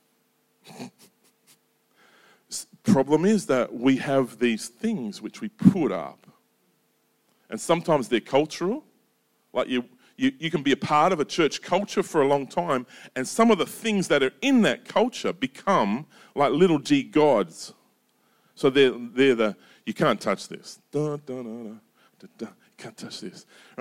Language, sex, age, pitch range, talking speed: English, male, 40-59, 120-190 Hz, 165 wpm